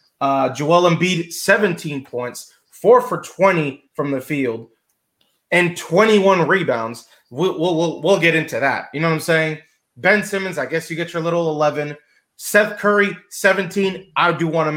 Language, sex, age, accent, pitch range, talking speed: English, male, 20-39, American, 140-180 Hz, 165 wpm